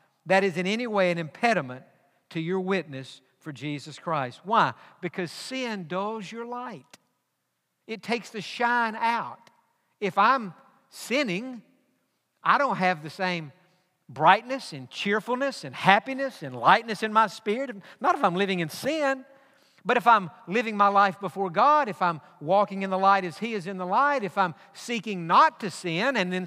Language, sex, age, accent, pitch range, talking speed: English, male, 60-79, American, 175-225 Hz, 170 wpm